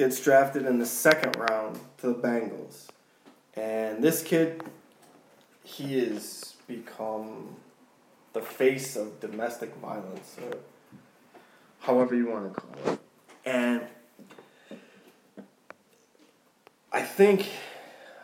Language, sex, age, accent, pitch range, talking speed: English, male, 20-39, American, 115-140 Hz, 100 wpm